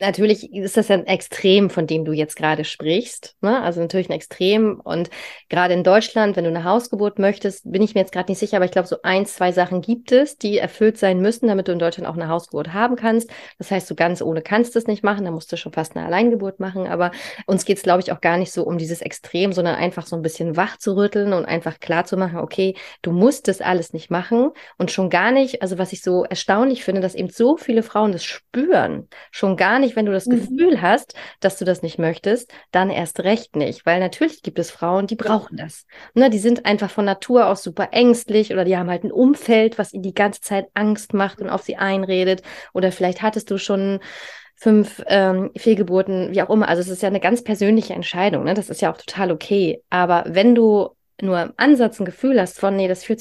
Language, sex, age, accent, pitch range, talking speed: German, female, 30-49, German, 180-215 Hz, 240 wpm